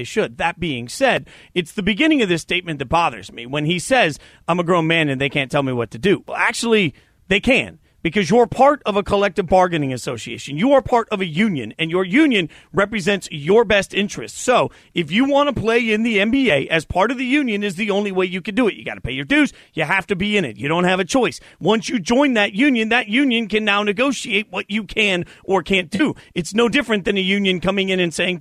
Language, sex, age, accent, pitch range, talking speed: English, male, 40-59, American, 180-245 Hz, 250 wpm